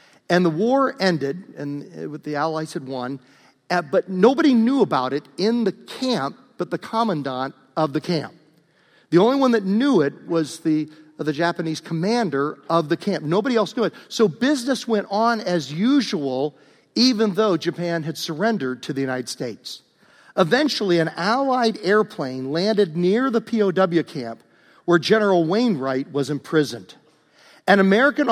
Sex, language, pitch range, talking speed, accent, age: male, English, 155-230 Hz, 155 wpm, American, 50-69